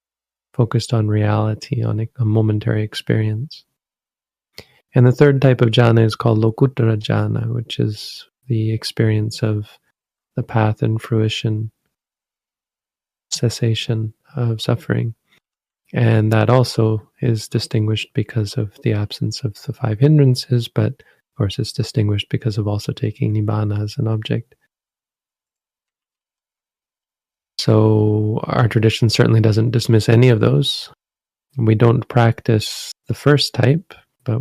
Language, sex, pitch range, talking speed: English, male, 110-125 Hz, 125 wpm